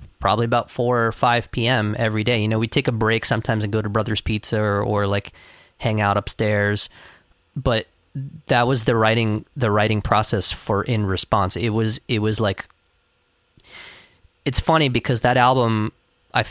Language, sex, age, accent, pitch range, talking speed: English, male, 30-49, American, 105-125 Hz, 175 wpm